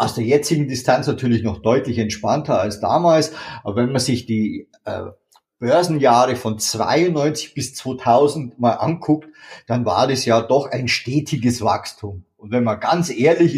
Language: German